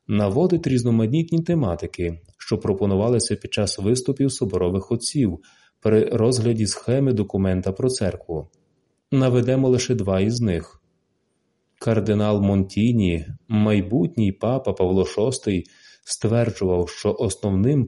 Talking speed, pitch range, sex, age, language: 100 wpm, 95-125 Hz, male, 30-49, Ukrainian